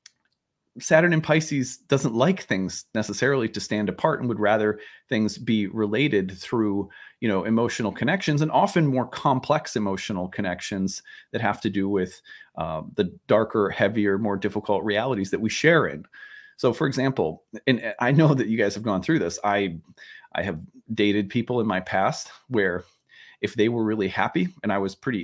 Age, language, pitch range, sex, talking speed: 30-49, English, 100-135 Hz, male, 175 wpm